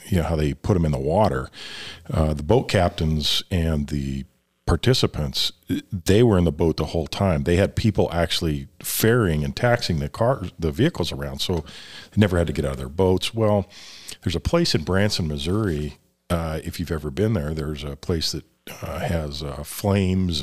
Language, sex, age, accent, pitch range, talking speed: English, male, 50-69, American, 75-95 Hz, 195 wpm